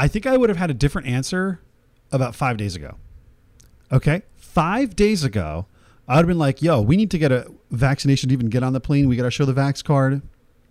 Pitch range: 105-145 Hz